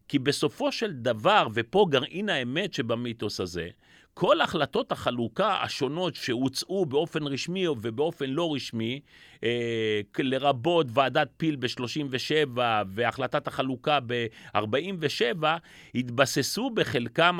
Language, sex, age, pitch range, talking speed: Hebrew, male, 40-59, 120-175 Hz, 95 wpm